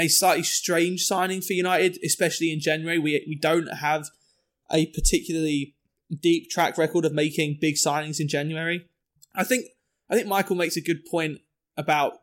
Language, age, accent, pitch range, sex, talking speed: English, 20-39, British, 150-170 Hz, male, 165 wpm